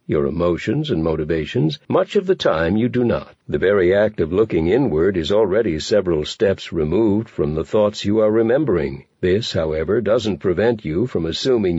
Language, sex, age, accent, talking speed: English, male, 60-79, American, 180 wpm